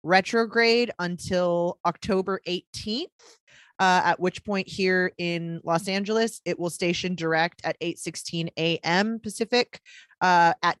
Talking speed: 130 wpm